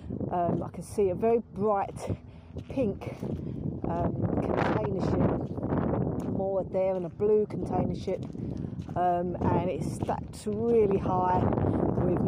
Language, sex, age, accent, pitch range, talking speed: English, female, 50-69, British, 180-220 Hz, 120 wpm